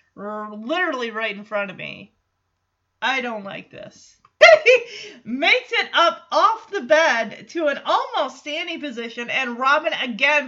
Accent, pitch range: American, 210-315 Hz